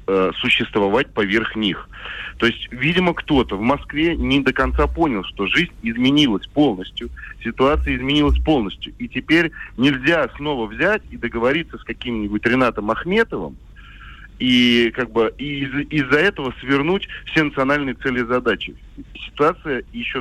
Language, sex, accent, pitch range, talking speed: Russian, male, native, 115-145 Hz, 130 wpm